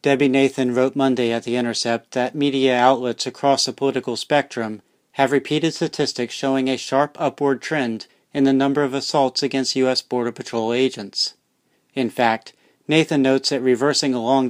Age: 40-59